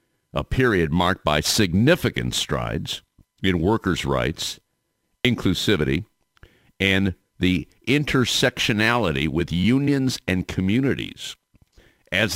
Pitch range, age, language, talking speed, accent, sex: 80-110 Hz, 50-69, English, 85 wpm, American, male